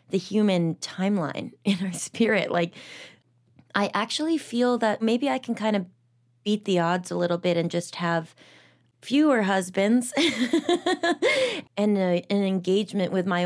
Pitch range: 170-205 Hz